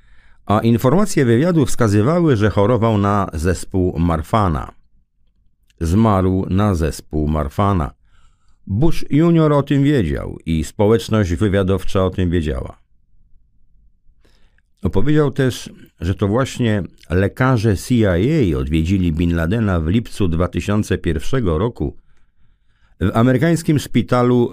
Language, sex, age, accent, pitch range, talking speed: Polish, male, 50-69, native, 85-120 Hz, 100 wpm